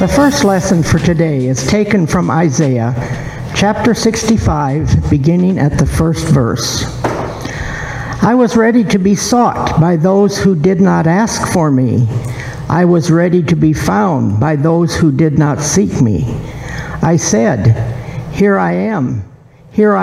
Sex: male